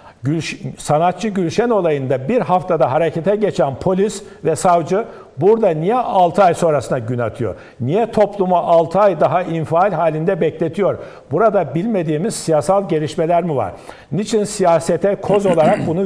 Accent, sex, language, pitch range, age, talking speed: native, male, Turkish, 155-195 Hz, 60-79, 140 wpm